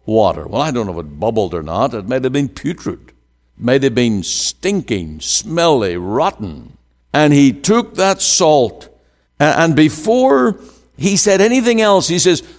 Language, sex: English, male